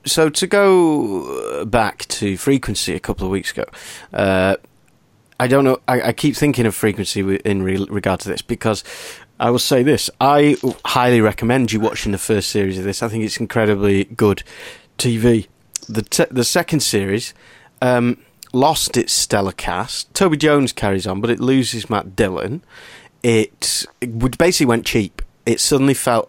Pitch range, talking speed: 100-130 Hz, 170 wpm